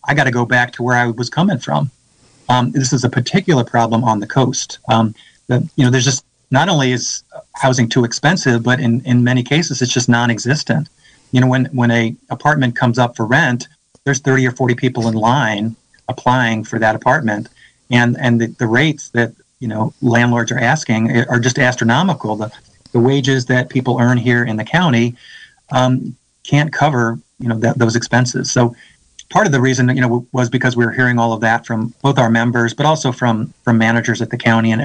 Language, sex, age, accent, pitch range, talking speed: English, male, 30-49, American, 115-130 Hz, 210 wpm